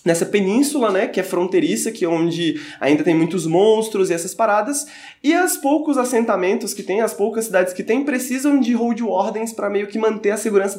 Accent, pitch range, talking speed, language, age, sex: Brazilian, 185-255 Hz, 205 wpm, Portuguese, 20-39, male